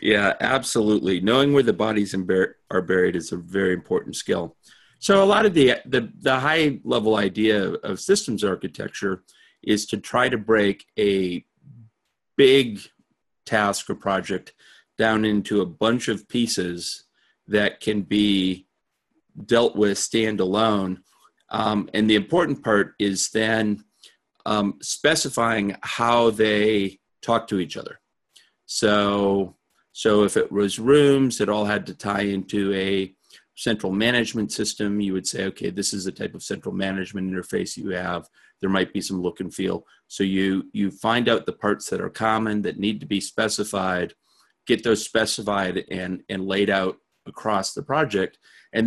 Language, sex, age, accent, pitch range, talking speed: English, male, 40-59, American, 95-110 Hz, 155 wpm